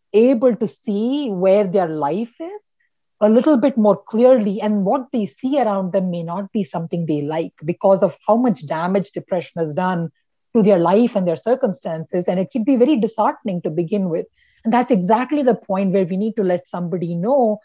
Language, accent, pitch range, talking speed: English, Indian, 175-230 Hz, 200 wpm